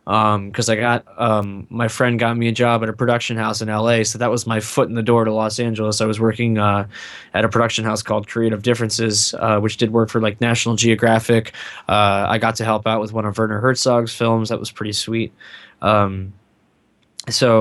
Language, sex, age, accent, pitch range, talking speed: English, male, 10-29, American, 110-120 Hz, 220 wpm